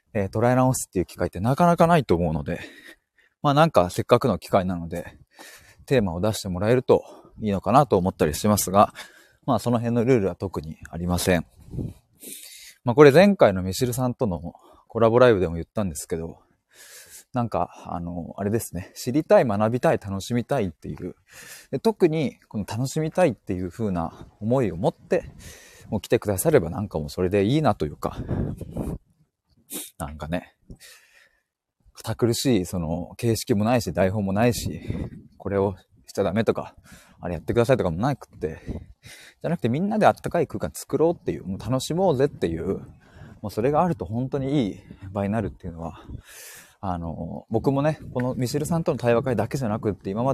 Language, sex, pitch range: Japanese, male, 90-125 Hz